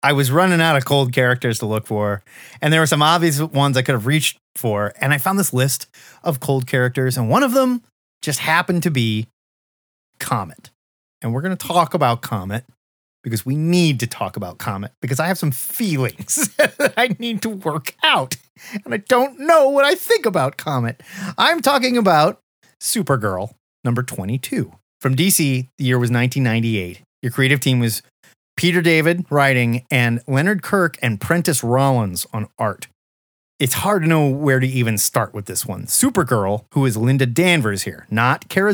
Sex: male